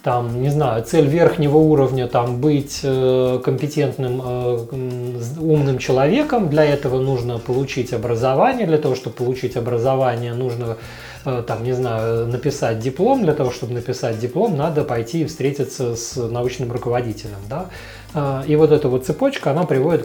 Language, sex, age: Russian, male, 30-49